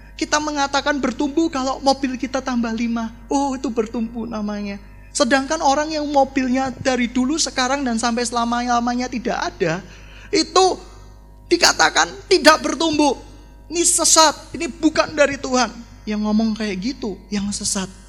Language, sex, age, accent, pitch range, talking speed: Indonesian, male, 20-39, native, 180-260 Hz, 135 wpm